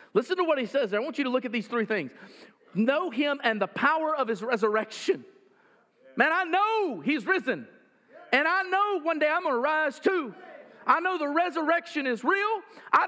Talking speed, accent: 205 wpm, American